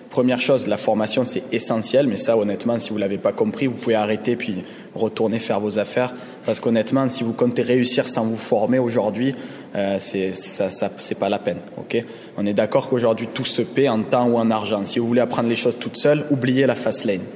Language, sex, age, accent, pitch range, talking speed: French, male, 20-39, French, 110-130 Hz, 230 wpm